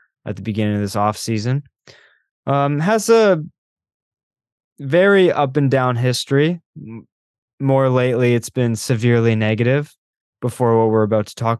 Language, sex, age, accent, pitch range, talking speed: English, male, 20-39, American, 105-135 Hz, 140 wpm